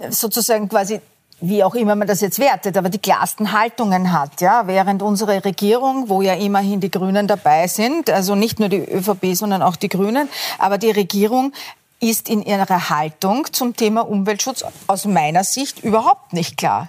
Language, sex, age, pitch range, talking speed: German, female, 50-69, 190-230 Hz, 180 wpm